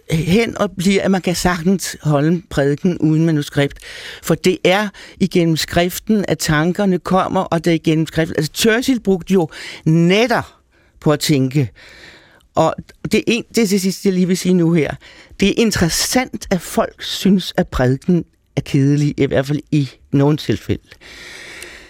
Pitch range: 145-190 Hz